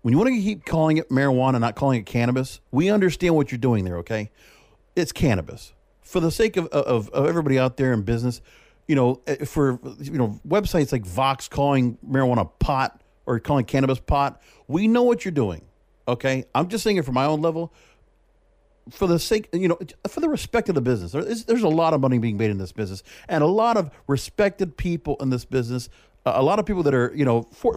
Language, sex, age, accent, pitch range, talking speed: English, male, 50-69, American, 120-165 Hz, 220 wpm